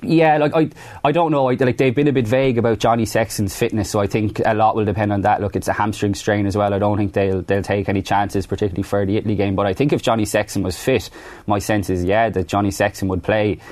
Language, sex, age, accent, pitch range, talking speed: English, male, 20-39, Irish, 100-110 Hz, 275 wpm